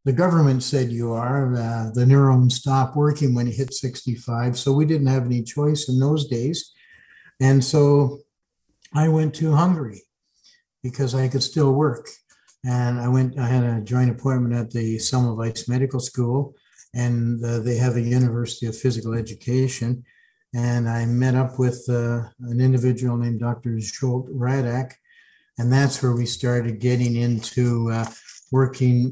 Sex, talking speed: male, 160 wpm